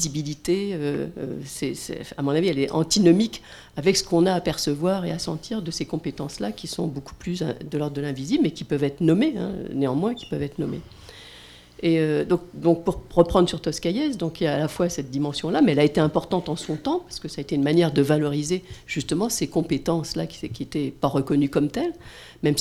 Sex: female